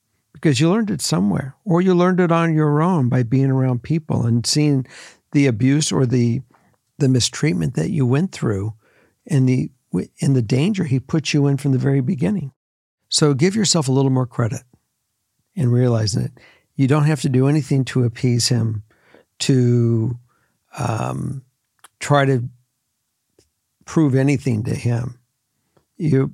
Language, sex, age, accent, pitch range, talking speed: English, male, 60-79, American, 120-145 Hz, 155 wpm